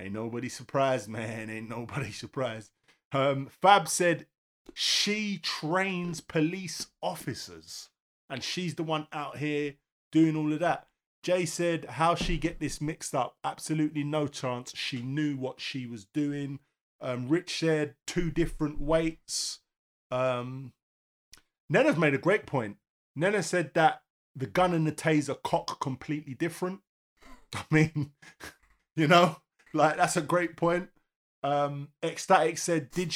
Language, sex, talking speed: English, male, 140 wpm